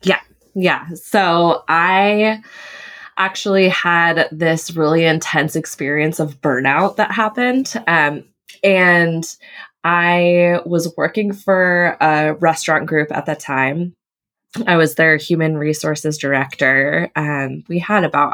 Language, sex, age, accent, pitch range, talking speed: English, female, 20-39, American, 140-175 Hz, 120 wpm